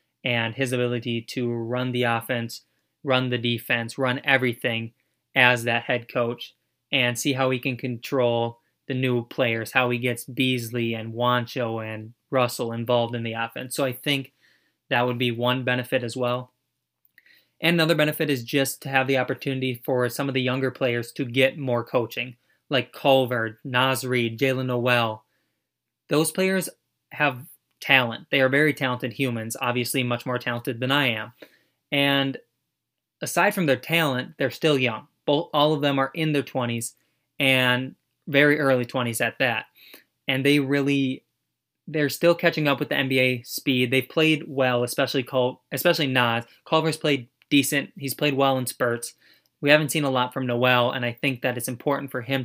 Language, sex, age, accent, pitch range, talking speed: English, male, 20-39, American, 120-140 Hz, 170 wpm